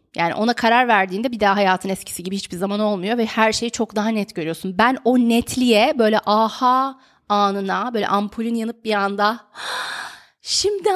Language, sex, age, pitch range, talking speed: Turkish, female, 30-49, 200-260 Hz, 170 wpm